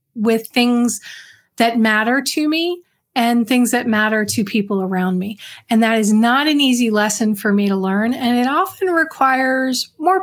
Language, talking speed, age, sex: English, 175 wpm, 30-49, female